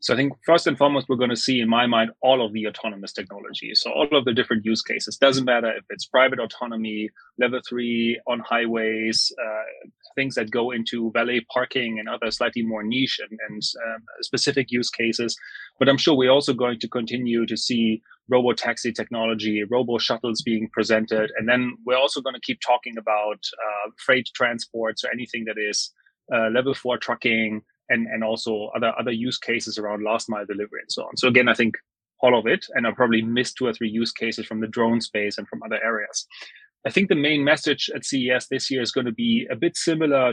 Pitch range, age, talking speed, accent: 115-135 Hz, 30-49, 210 wpm, German